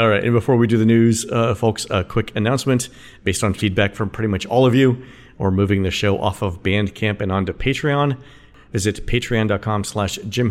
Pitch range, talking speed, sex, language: 95-125 Hz, 200 wpm, male, English